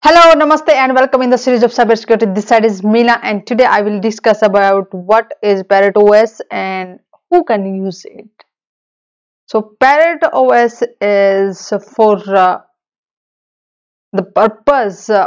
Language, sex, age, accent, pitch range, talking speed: English, female, 30-49, Indian, 200-245 Hz, 145 wpm